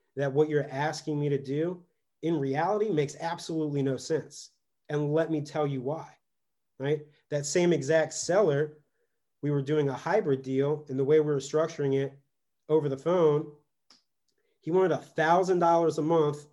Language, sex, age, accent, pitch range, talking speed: English, male, 30-49, American, 140-160 Hz, 170 wpm